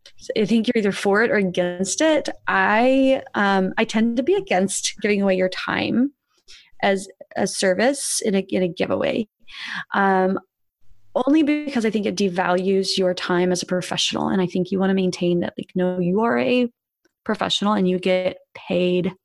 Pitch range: 185-230 Hz